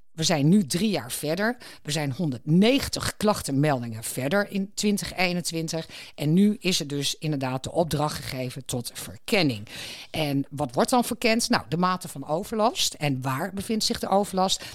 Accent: Dutch